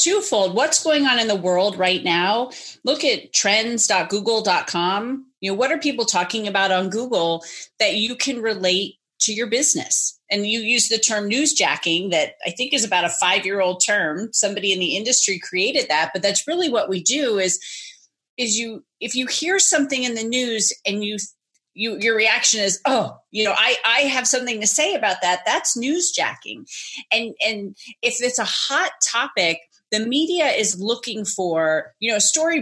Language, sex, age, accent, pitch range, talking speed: English, female, 30-49, American, 185-245 Hz, 180 wpm